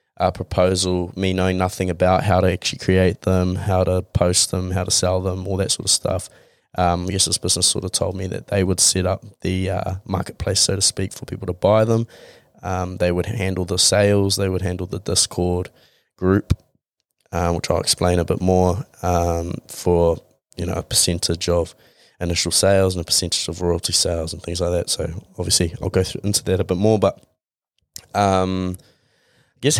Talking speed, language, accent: 200 wpm, English, Australian